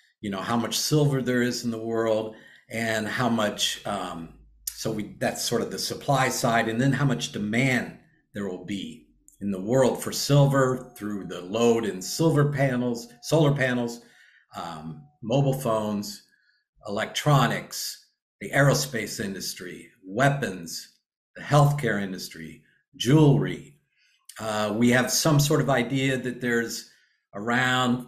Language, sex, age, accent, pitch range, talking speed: English, male, 50-69, American, 110-140 Hz, 140 wpm